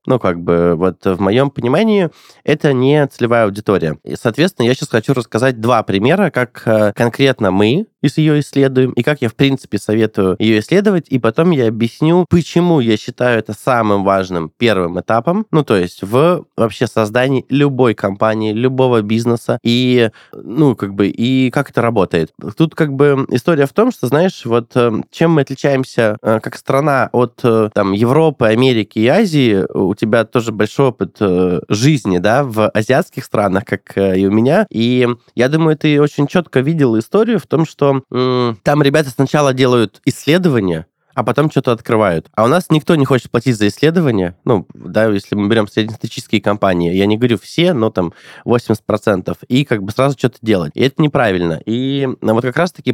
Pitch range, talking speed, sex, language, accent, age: 110-145 Hz, 175 wpm, male, Russian, native, 20-39